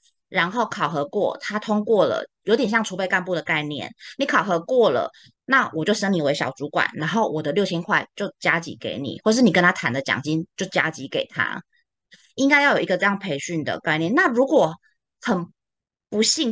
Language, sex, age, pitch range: Chinese, female, 20-39, 165-225 Hz